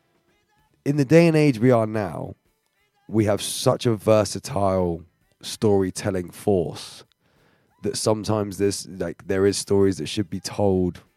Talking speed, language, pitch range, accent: 140 wpm, English, 90-105 Hz, British